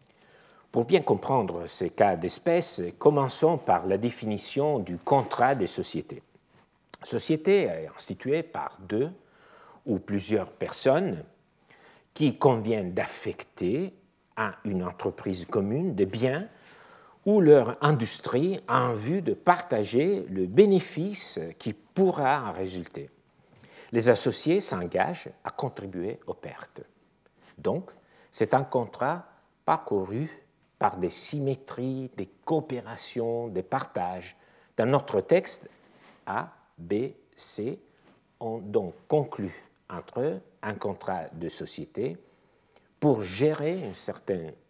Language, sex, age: French, male, 60-79